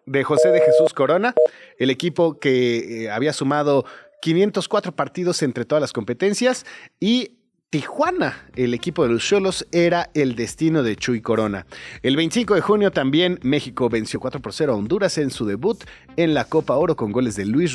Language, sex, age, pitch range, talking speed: Spanish, male, 40-59, 130-185 Hz, 175 wpm